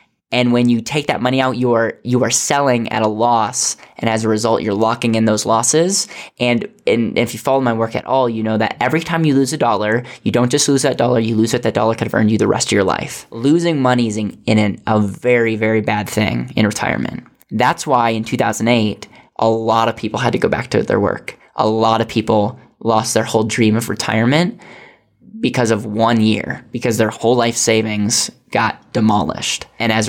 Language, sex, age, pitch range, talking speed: English, male, 10-29, 110-125 Hz, 225 wpm